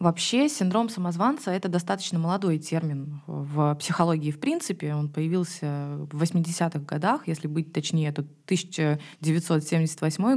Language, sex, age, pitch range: Russian, female, 20-39, 160-195 Hz